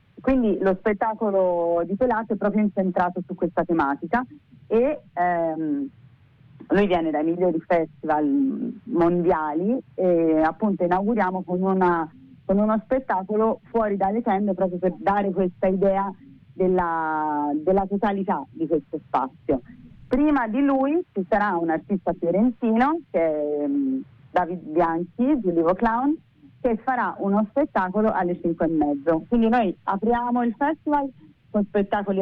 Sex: female